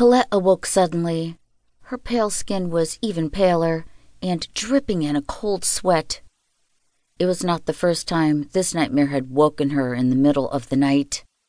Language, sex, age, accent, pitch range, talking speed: English, female, 50-69, American, 155-195 Hz, 165 wpm